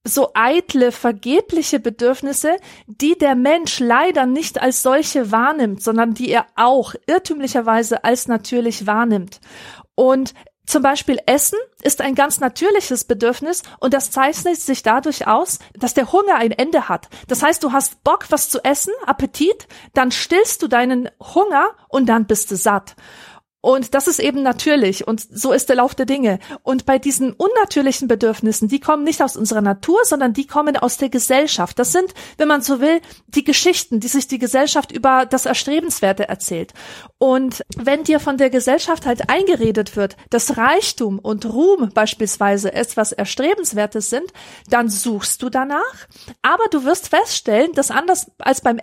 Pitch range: 235-300 Hz